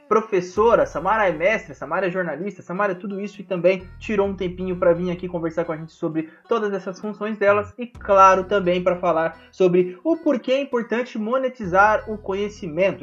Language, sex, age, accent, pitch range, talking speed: Portuguese, male, 20-39, Brazilian, 175-220 Hz, 190 wpm